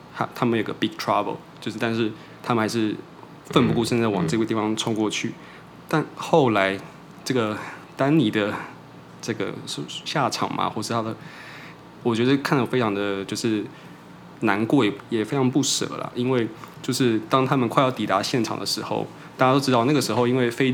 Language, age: Chinese, 20-39